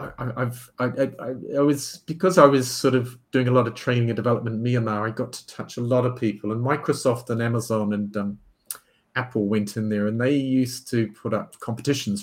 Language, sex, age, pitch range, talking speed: English, male, 40-59, 115-140 Hz, 220 wpm